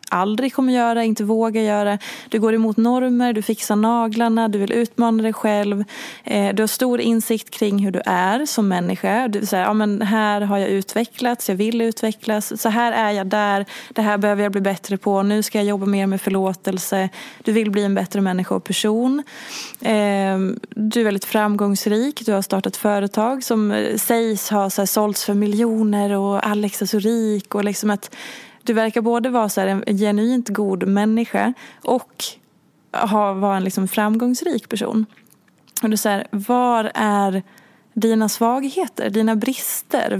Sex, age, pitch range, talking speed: female, 20-39, 200-230 Hz, 170 wpm